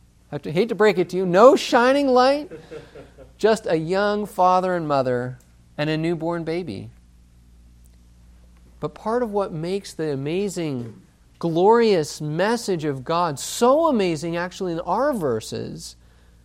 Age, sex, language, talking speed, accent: 40-59, male, English, 135 wpm, American